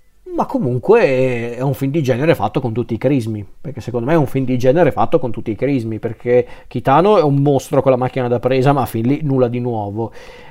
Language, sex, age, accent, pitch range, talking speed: Italian, male, 40-59, native, 125-140 Hz, 240 wpm